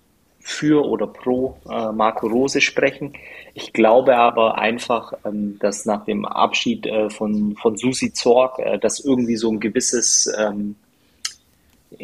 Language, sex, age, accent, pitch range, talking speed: German, male, 30-49, German, 105-120 Hz, 140 wpm